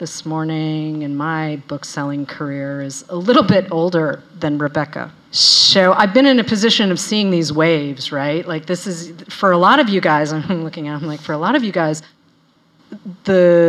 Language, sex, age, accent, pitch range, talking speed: English, female, 40-59, American, 145-185 Hz, 200 wpm